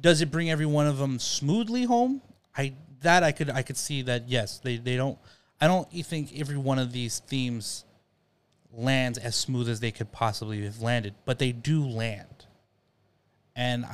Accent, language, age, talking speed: American, English, 30-49, 185 wpm